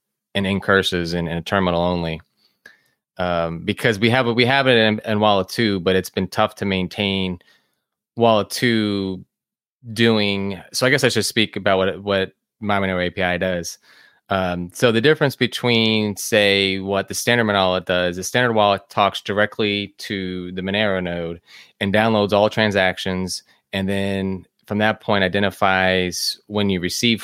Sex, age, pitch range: male, 20-39, 95-110 Hz